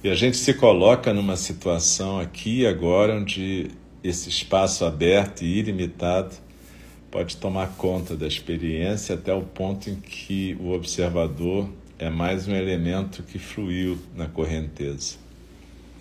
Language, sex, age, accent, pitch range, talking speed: Portuguese, male, 50-69, Brazilian, 80-95 Hz, 130 wpm